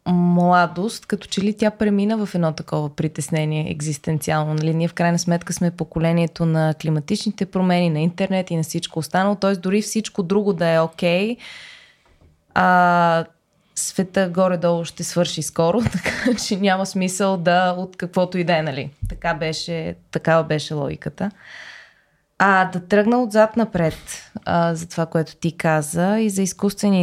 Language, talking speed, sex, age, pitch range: Bulgarian, 155 wpm, female, 20-39, 165-195 Hz